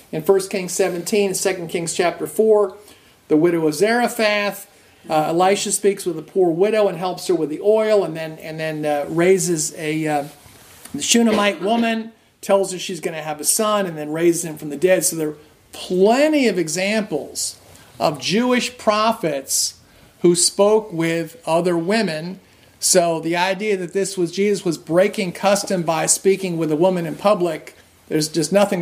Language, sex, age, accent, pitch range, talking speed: English, male, 50-69, American, 165-210 Hz, 175 wpm